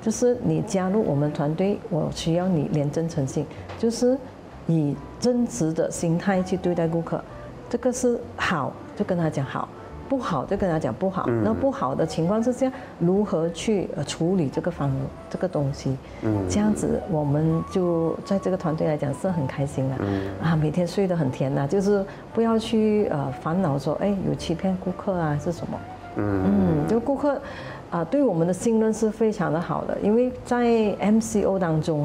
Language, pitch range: Chinese, 155-215 Hz